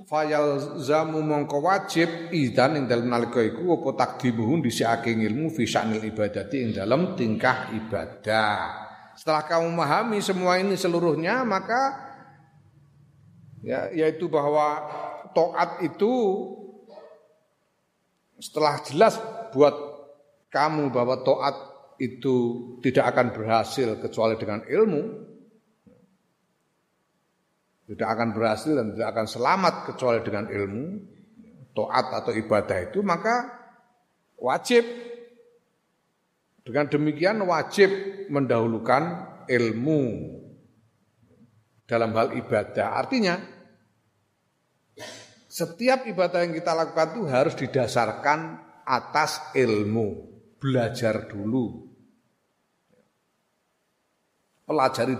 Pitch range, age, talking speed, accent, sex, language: 120-190 Hz, 40-59, 70 wpm, native, male, Indonesian